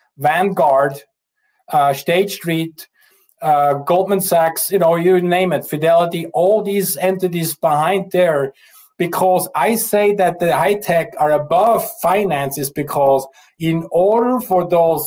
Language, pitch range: English, 145-195 Hz